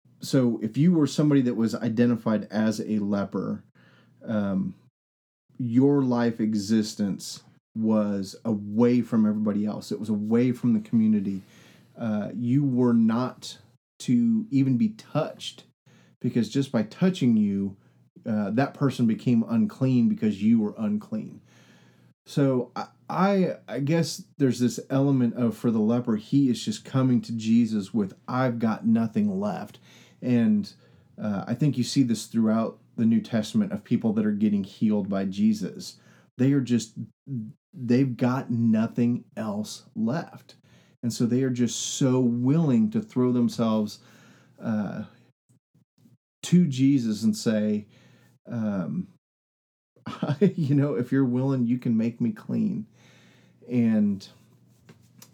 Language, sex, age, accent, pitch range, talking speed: English, male, 30-49, American, 110-155 Hz, 135 wpm